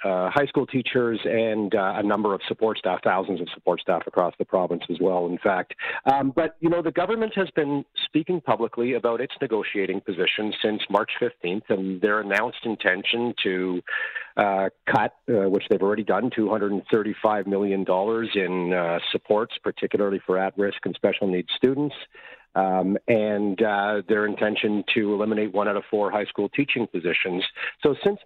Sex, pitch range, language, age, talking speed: male, 100-130 Hz, English, 50-69, 170 wpm